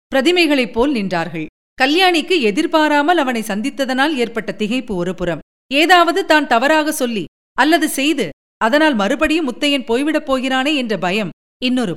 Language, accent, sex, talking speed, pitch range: Tamil, native, female, 120 wpm, 220-310 Hz